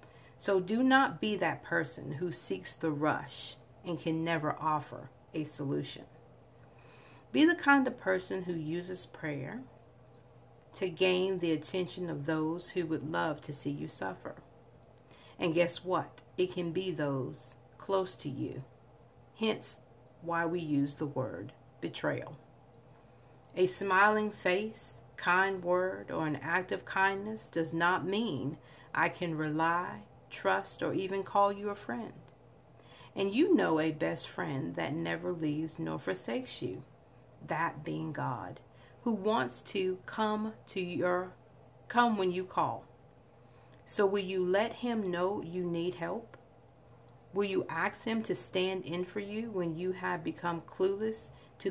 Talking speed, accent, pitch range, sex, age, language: 145 wpm, American, 150-190 Hz, female, 50-69, English